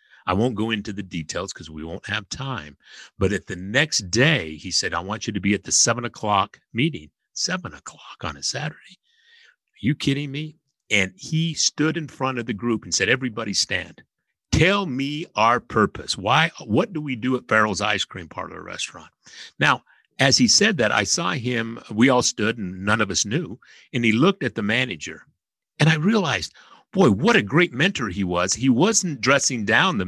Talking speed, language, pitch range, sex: 200 wpm, English, 100-160 Hz, male